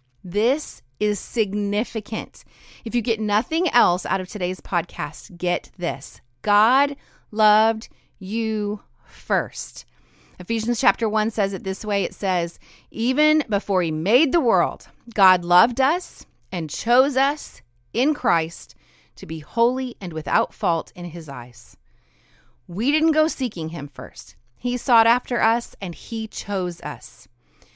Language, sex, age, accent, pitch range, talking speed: English, female, 30-49, American, 180-245 Hz, 140 wpm